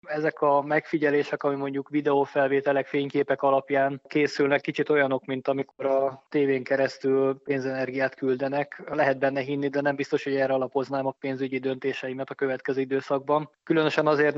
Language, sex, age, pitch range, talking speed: Hungarian, male, 20-39, 130-140 Hz, 145 wpm